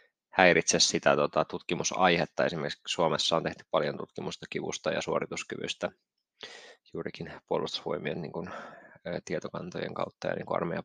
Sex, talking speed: male, 100 wpm